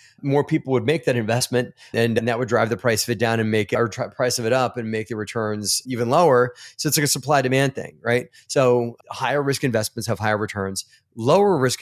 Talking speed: 235 wpm